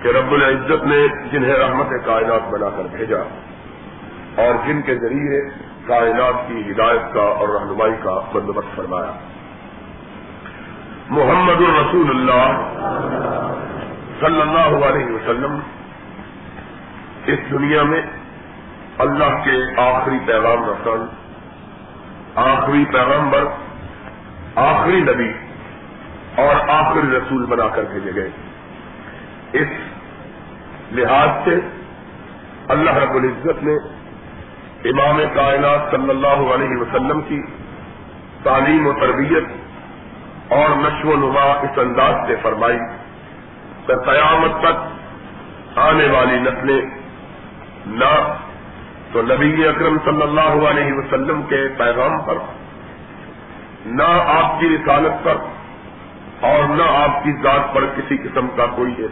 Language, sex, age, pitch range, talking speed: Urdu, male, 50-69, 120-145 Hz, 110 wpm